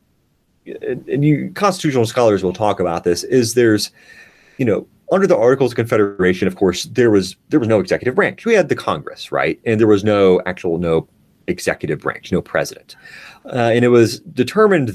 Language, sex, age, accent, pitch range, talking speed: English, male, 30-49, American, 95-120 Hz, 185 wpm